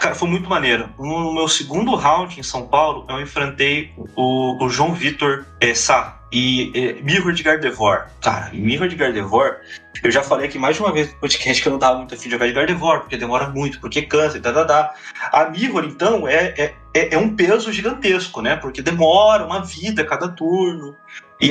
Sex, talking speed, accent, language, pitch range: male, 205 wpm, Brazilian, Portuguese, 150-195 Hz